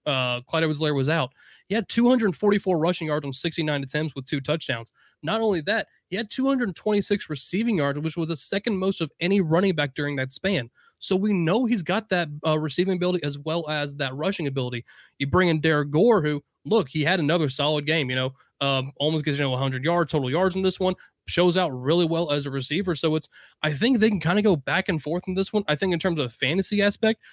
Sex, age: male, 20-39